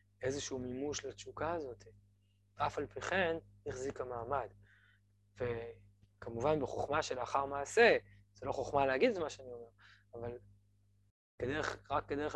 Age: 20-39